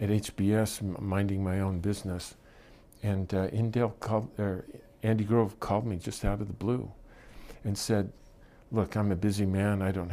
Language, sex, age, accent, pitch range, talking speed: English, male, 50-69, American, 95-115 Hz, 170 wpm